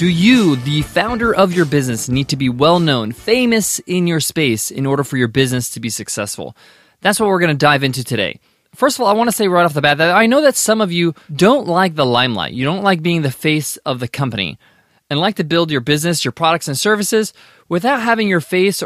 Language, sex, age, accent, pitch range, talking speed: English, male, 20-39, American, 150-200 Hz, 240 wpm